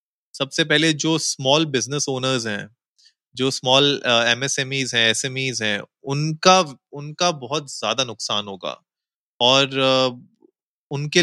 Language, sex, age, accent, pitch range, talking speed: Hindi, male, 20-39, native, 115-140 Hz, 110 wpm